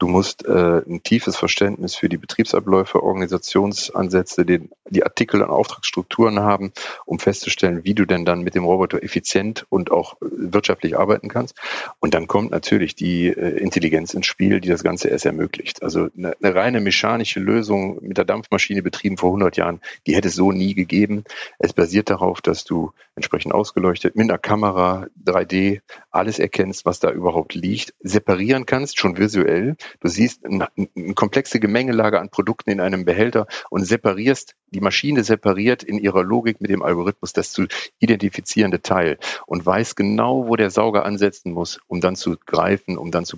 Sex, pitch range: male, 90-110 Hz